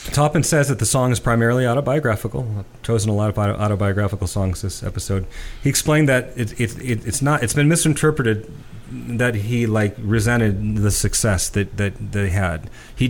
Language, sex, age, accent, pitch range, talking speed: English, male, 40-59, American, 95-115 Hz, 180 wpm